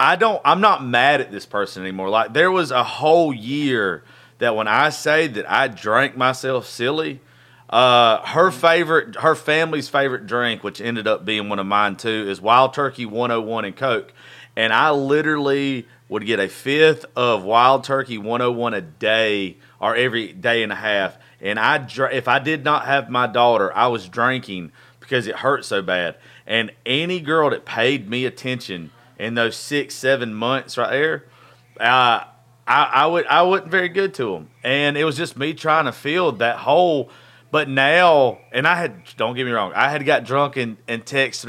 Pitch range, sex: 115-140 Hz, male